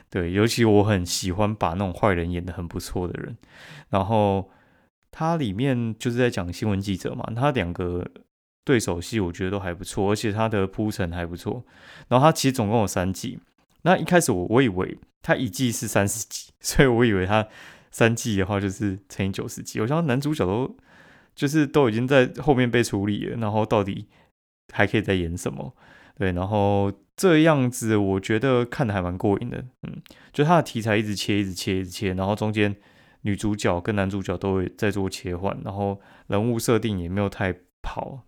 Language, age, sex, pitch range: Chinese, 20-39, male, 95-120 Hz